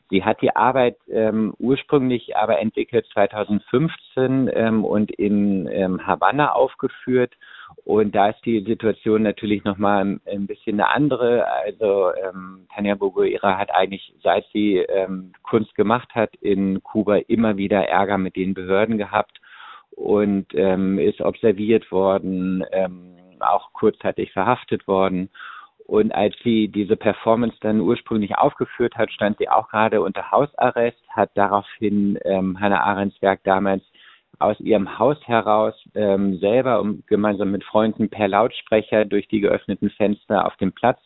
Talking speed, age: 145 wpm, 50-69